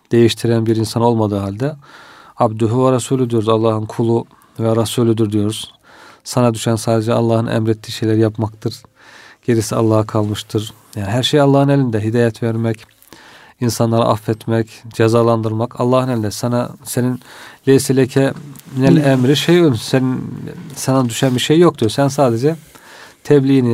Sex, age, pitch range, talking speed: male, 40-59, 115-135 Hz, 130 wpm